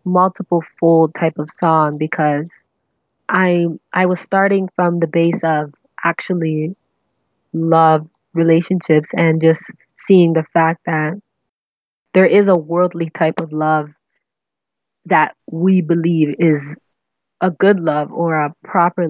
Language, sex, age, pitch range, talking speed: English, female, 20-39, 150-175 Hz, 125 wpm